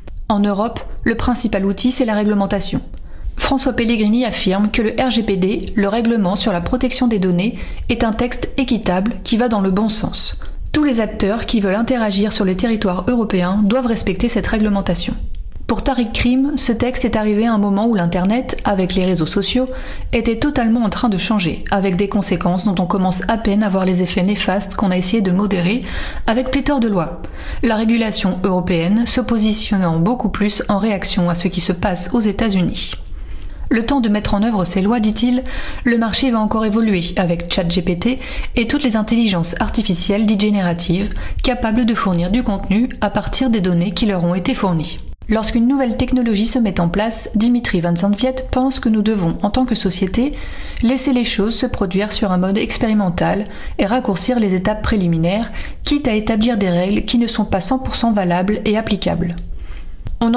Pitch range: 190-235 Hz